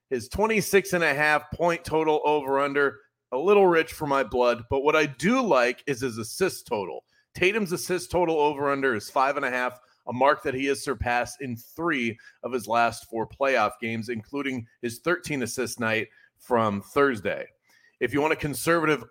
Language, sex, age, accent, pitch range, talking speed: English, male, 30-49, American, 120-155 Hz, 165 wpm